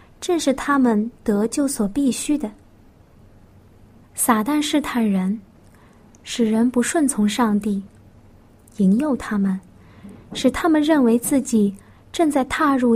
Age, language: 20-39, Chinese